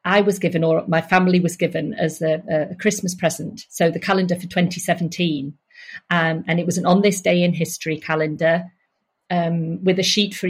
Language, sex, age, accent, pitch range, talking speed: English, female, 40-59, British, 170-205 Hz, 195 wpm